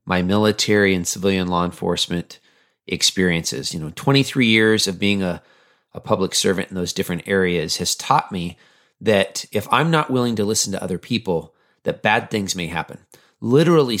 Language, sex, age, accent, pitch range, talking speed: English, male, 30-49, American, 90-115 Hz, 170 wpm